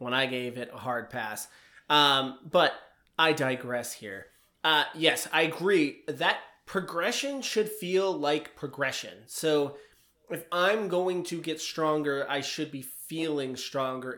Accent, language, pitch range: American, English, 130-160 Hz